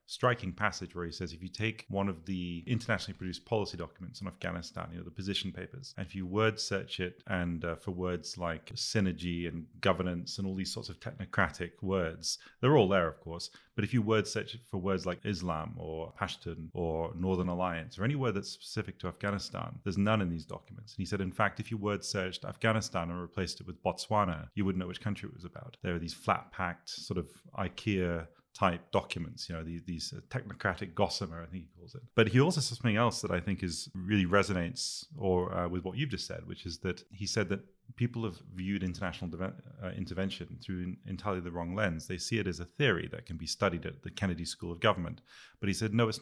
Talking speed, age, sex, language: 230 wpm, 30-49, male, English